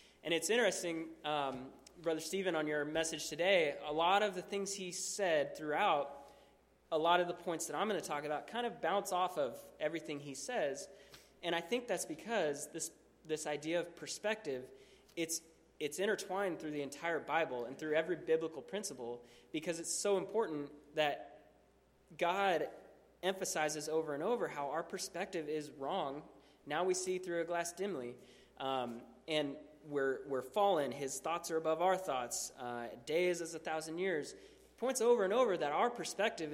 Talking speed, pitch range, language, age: 175 wpm, 145-185 Hz, English, 20-39